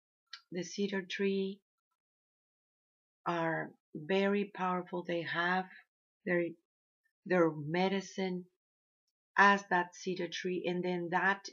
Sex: female